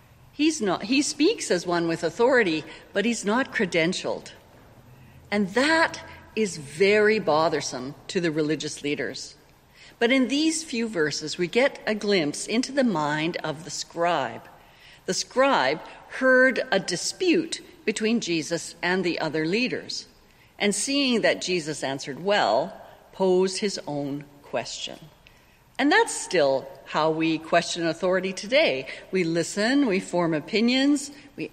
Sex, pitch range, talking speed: female, 160-250 Hz, 135 wpm